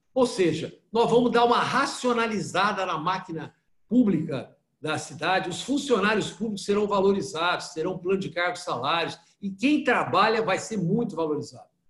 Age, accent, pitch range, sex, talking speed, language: 60-79, Brazilian, 175-220 Hz, male, 145 wpm, Portuguese